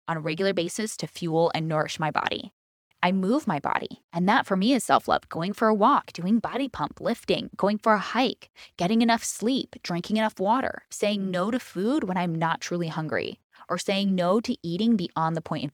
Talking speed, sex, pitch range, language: 215 wpm, female, 155-215 Hz, English